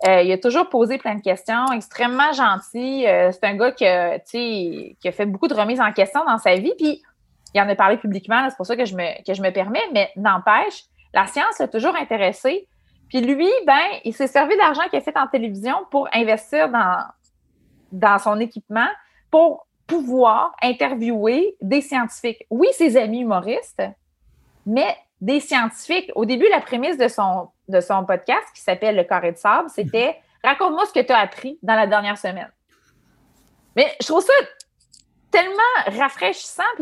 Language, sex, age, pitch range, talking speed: French, female, 30-49, 205-280 Hz, 185 wpm